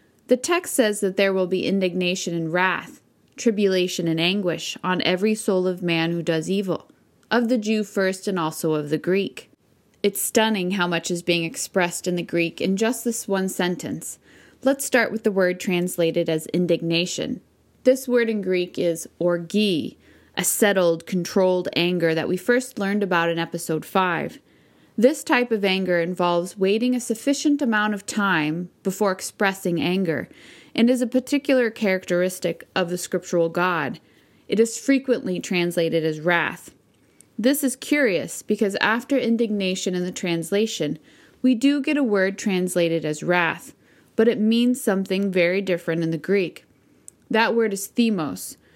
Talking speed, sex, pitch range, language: 160 wpm, female, 175-225 Hz, English